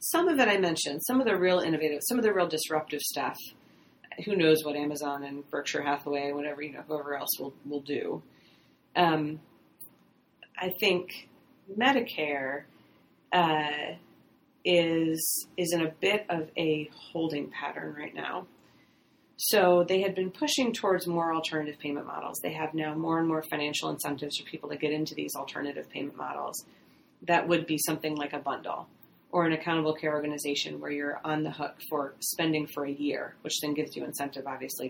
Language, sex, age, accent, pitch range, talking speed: English, female, 30-49, American, 145-175 Hz, 175 wpm